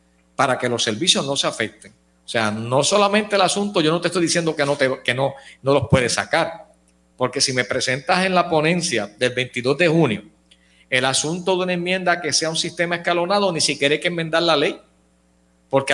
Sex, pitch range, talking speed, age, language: male, 125-165 Hz, 210 wpm, 50-69, Spanish